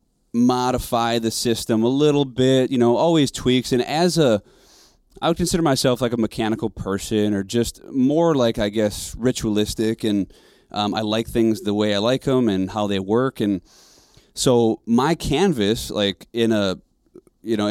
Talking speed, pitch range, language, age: 175 wpm, 105-125 Hz, English, 30-49